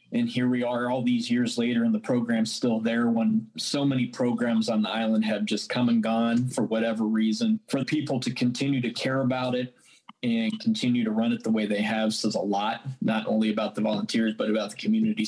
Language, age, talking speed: English, 20-39, 225 wpm